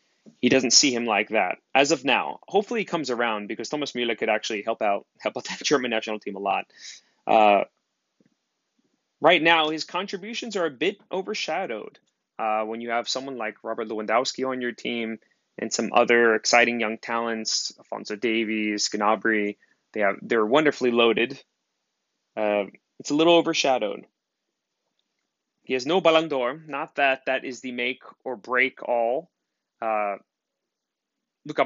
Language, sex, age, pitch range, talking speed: English, male, 20-39, 110-140 Hz, 155 wpm